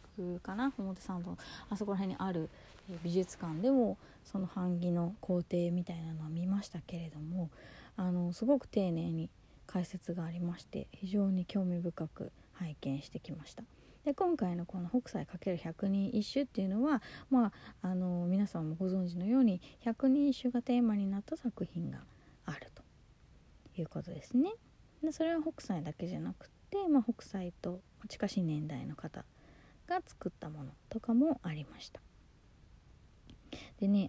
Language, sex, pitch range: Japanese, female, 165-225 Hz